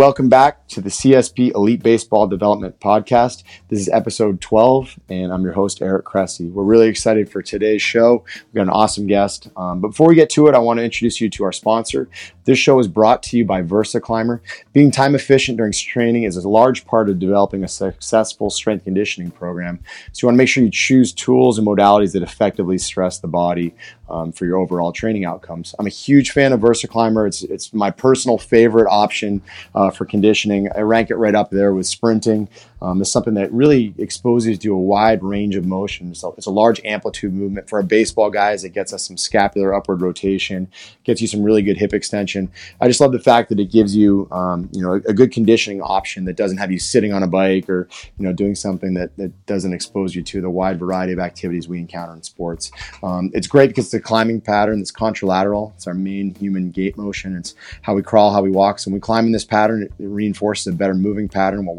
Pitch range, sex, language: 95-115 Hz, male, English